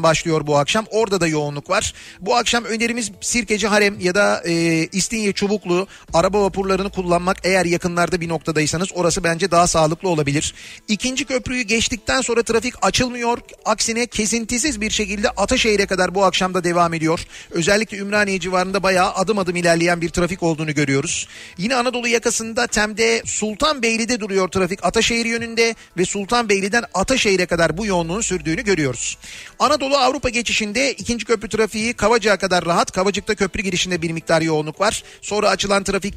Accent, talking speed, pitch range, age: native, 155 wpm, 175-220 Hz, 40-59